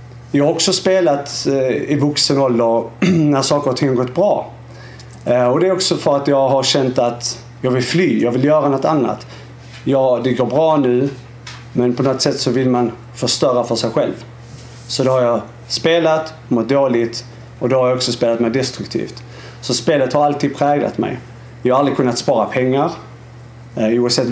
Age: 30-49